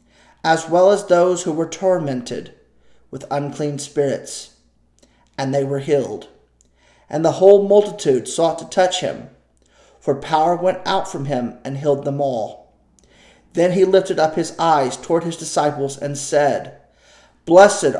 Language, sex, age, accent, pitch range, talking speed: English, male, 40-59, American, 140-170 Hz, 145 wpm